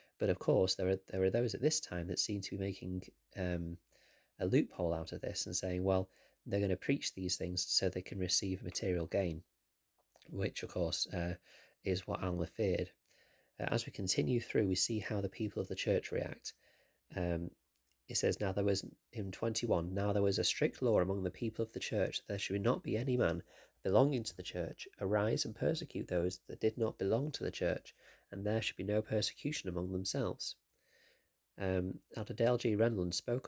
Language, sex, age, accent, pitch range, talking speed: English, male, 30-49, British, 90-115 Hz, 205 wpm